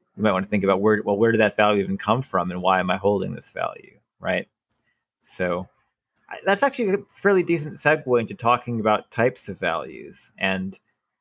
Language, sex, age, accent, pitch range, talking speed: English, male, 30-49, American, 105-135 Hz, 200 wpm